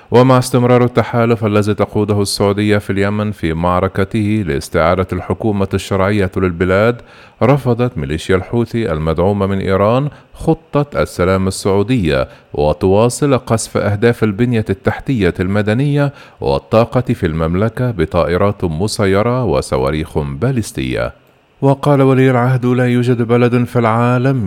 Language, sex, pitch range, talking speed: Arabic, male, 90-120 Hz, 110 wpm